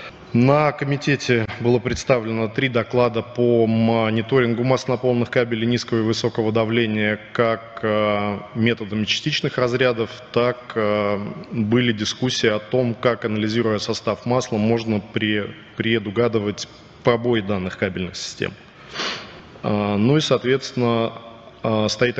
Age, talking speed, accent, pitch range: 20-39, 100 wpm, native, 110-125 Hz